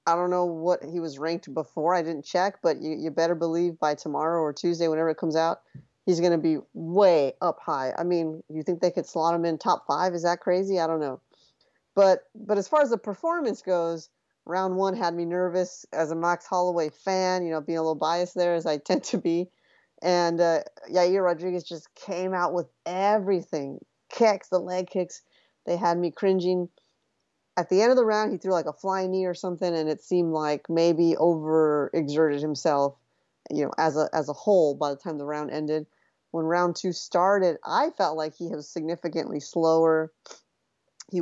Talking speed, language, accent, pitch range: 205 wpm, English, American, 160-180 Hz